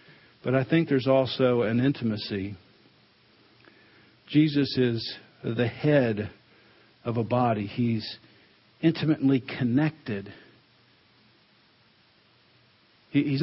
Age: 50-69